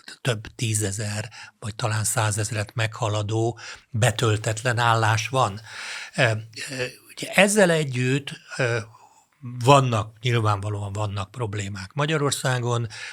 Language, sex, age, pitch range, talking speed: Hungarian, male, 60-79, 110-130 Hz, 75 wpm